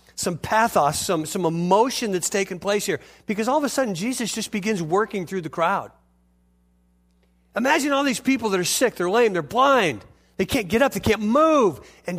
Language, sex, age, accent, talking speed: English, male, 50-69, American, 195 wpm